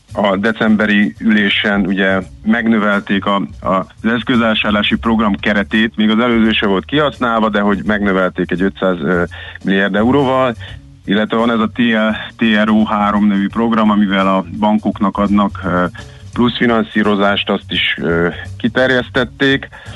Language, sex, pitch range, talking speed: Hungarian, male, 100-115 Hz, 120 wpm